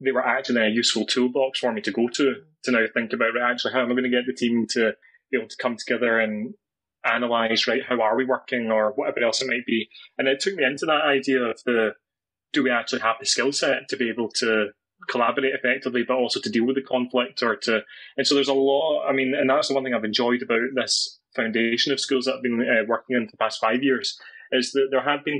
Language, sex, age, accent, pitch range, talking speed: English, male, 20-39, British, 115-135 Hz, 255 wpm